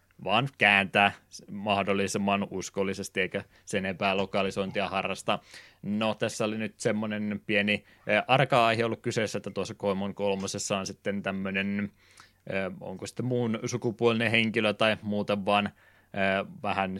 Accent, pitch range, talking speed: native, 95-110 Hz, 120 wpm